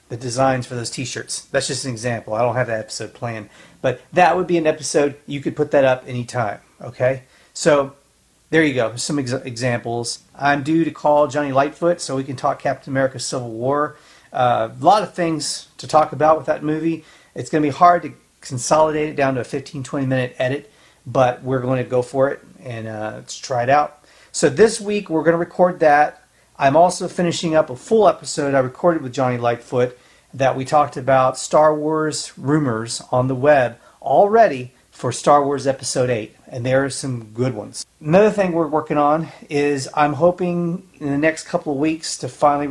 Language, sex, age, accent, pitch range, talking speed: English, male, 40-59, American, 130-155 Hz, 200 wpm